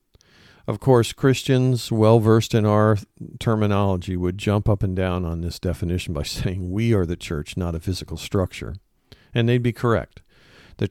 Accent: American